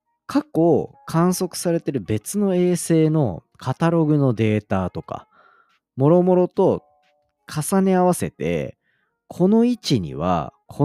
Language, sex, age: Japanese, male, 40-59